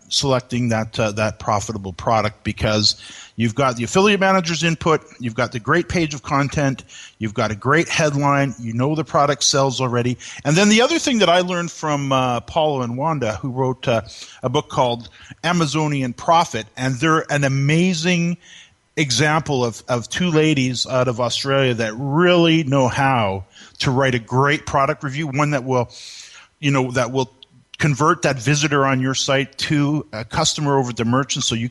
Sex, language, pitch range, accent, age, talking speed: male, English, 120-150 Hz, American, 40-59, 180 wpm